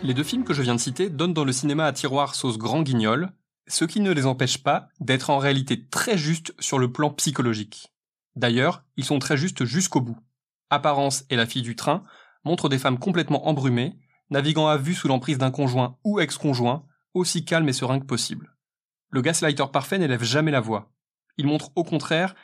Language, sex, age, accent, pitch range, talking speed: French, male, 20-39, French, 130-165 Hz, 205 wpm